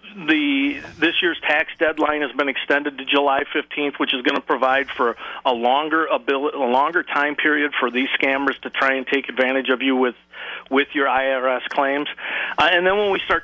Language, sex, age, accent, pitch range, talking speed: English, male, 40-59, American, 130-150 Hz, 205 wpm